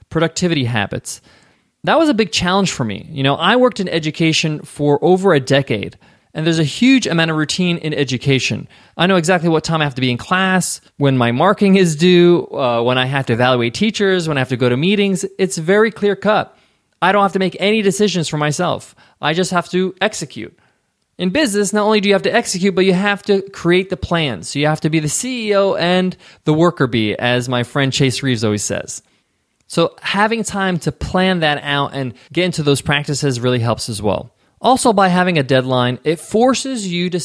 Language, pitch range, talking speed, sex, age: English, 135-185 Hz, 215 wpm, male, 20-39